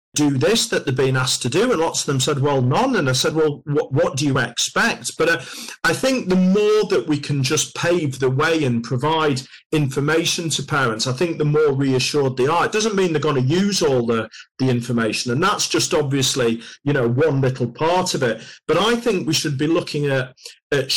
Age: 40-59